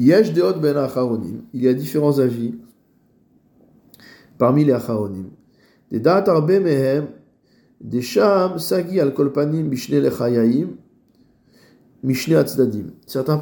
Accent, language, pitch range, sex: French, French, 120-145 Hz, male